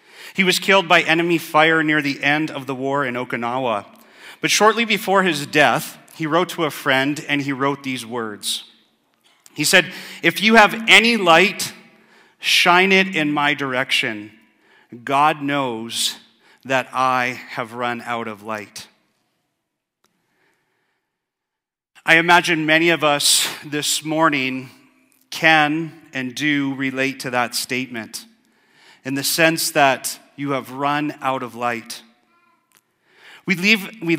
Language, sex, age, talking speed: English, male, 40-59, 135 wpm